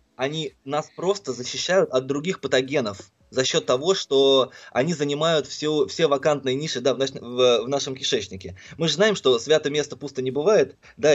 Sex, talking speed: male, 185 wpm